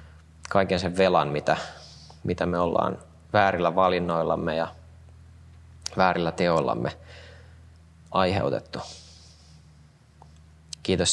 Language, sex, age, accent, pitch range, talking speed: Finnish, male, 20-39, native, 80-90 Hz, 75 wpm